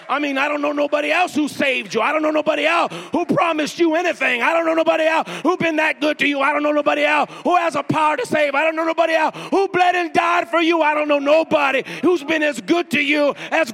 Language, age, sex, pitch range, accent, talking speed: English, 40-59, male, 235-320 Hz, American, 275 wpm